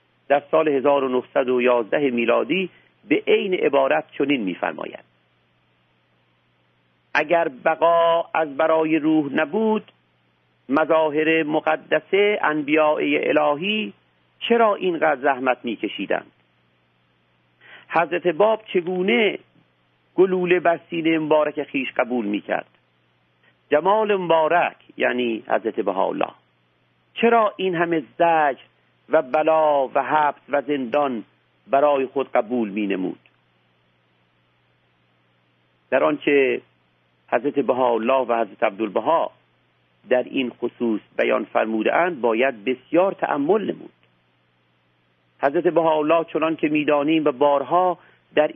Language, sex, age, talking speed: Persian, male, 50-69, 95 wpm